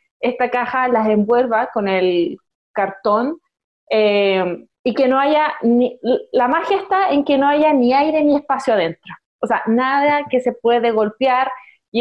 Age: 20-39